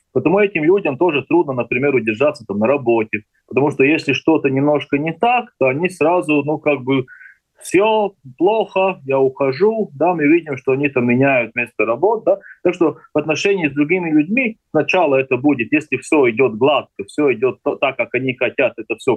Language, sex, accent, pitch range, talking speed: Russian, male, native, 125-190 Hz, 185 wpm